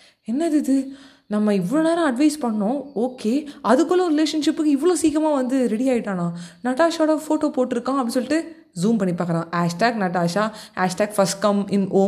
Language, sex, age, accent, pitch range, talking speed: Tamil, female, 20-39, native, 175-240 Hz, 120 wpm